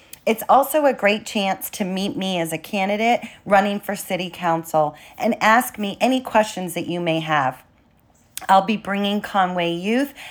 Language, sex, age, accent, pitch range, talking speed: English, female, 40-59, American, 175-220 Hz, 170 wpm